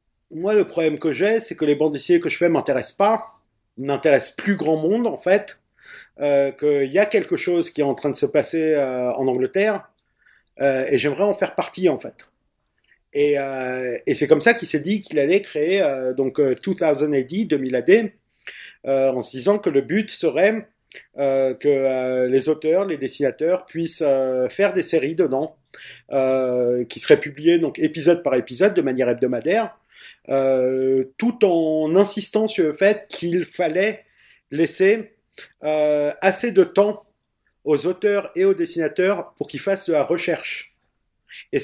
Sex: male